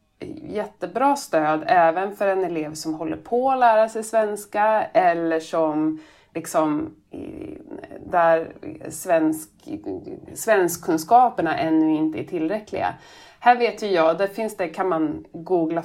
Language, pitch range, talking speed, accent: Swedish, 155-230 Hz, 125 wpm, native